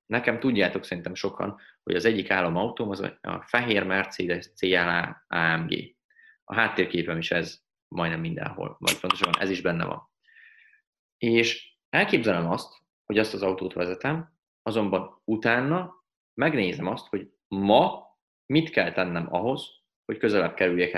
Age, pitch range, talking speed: 30-49, 95-115 Hz, 130 wpm